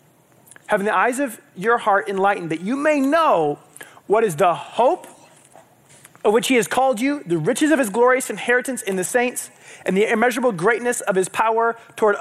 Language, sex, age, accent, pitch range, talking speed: English, male, 30-49, American, 205-280 Hz, 185 wpm